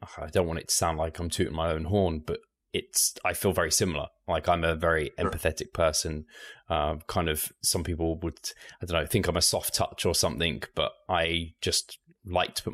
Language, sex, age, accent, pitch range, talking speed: English, male, 20-39, British, 80-90 Hz, 215 wpm